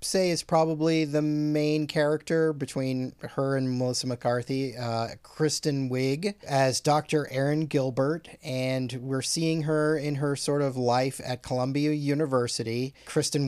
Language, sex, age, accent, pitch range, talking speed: English, male, 30-49, American, 120-150 Hz, 140 wpm